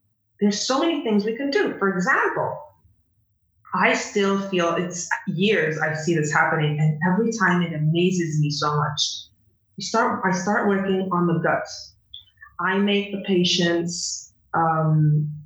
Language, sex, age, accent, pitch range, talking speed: English, female, 20-39, American, 160-200 Hz, 150 wpm